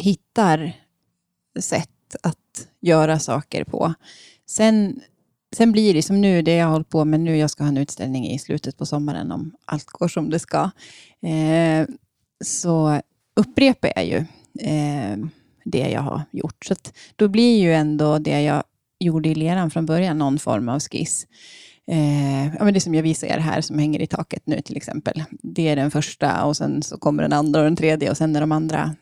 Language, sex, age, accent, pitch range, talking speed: Swedish, female, 20-39, native, 150-195 Hz, 195 wpm